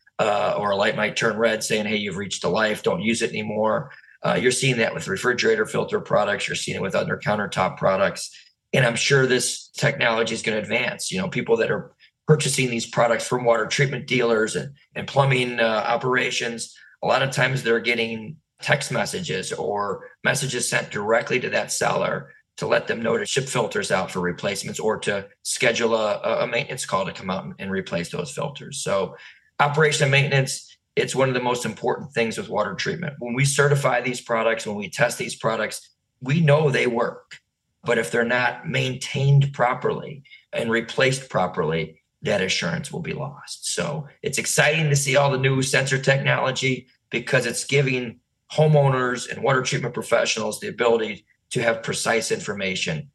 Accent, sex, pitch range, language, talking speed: American, male, 115-140 Hz, English, 185 wpm